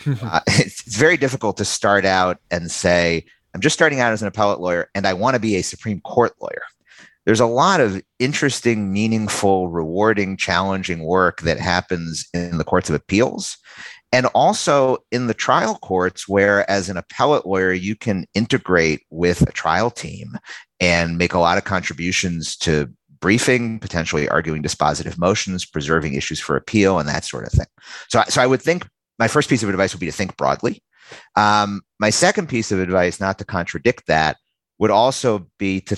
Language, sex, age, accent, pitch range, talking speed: English, male, 50-69, American, 85-105 Hz, 185 wpm